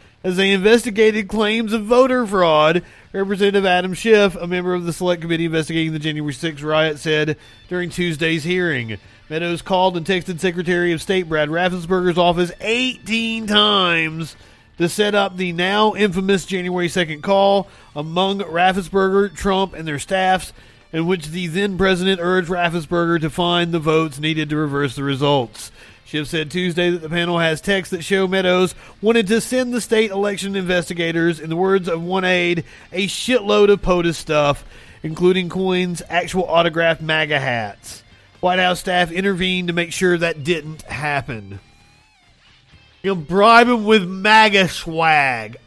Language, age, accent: English, 40-59, American